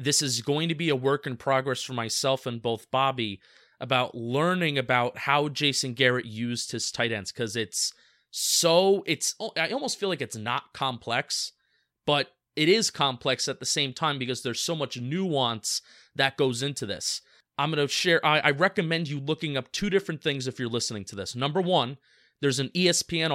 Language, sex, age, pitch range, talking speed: English, male, 30-49, 125-155 Hz, 195 wpm